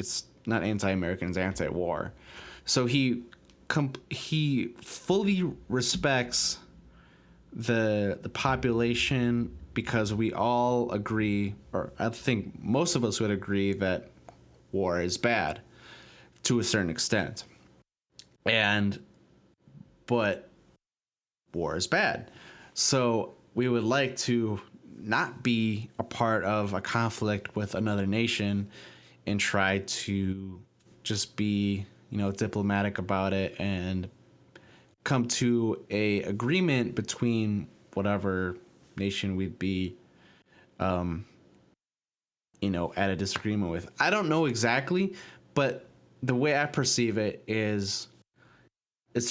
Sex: male